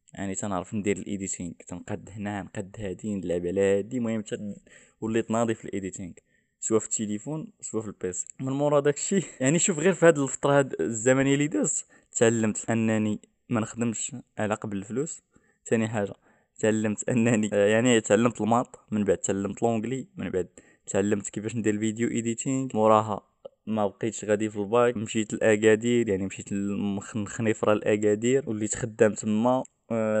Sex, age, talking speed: male, 20-39, 150 wpm